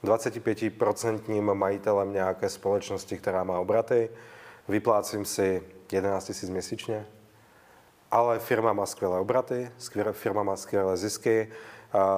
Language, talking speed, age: Czech, 115 wpm, 30-49